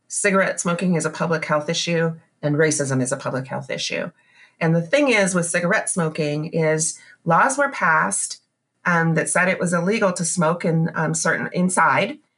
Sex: female